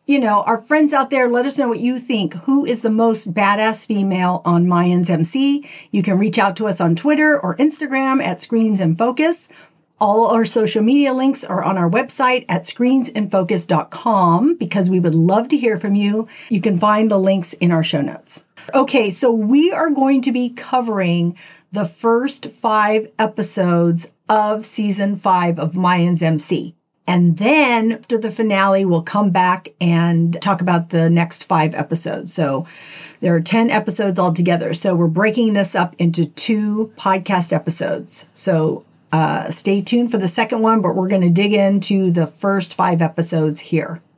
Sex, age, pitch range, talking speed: female, 50-69, 175-230 Hz, 180 wpm